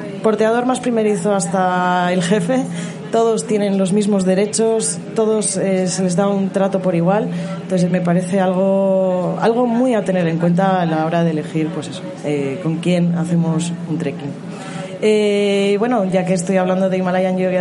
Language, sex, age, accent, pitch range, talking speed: Spanish, female, 20-39, Spanish, 175-205 Hz, 175 wpm